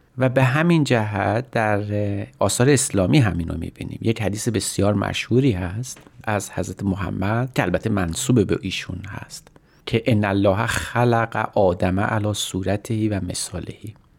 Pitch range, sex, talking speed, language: 95-120 Hz, male, 130 wpm, Persian